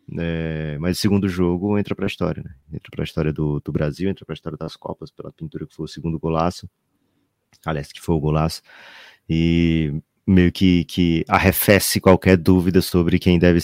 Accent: Brazilian